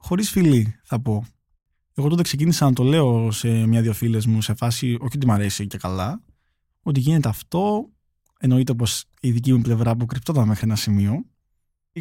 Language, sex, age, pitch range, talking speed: Greek, male, 20-39, 115-160 Hz, 180 wpm